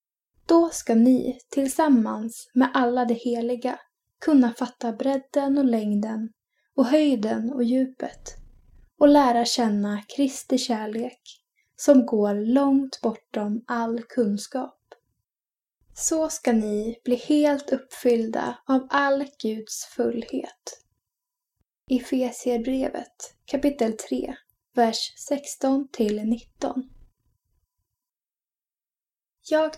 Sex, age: female, 10-29